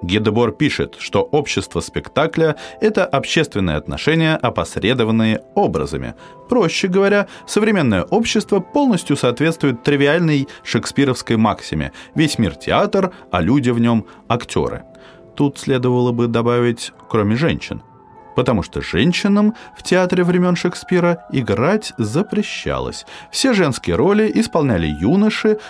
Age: 30-49